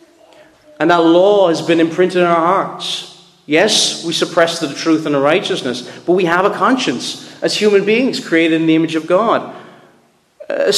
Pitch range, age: 150-195 Hz, 30-49